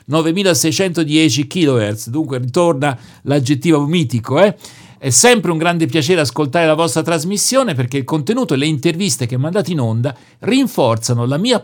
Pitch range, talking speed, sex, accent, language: 130-190 Hz, 150 wpm, male, native, Italian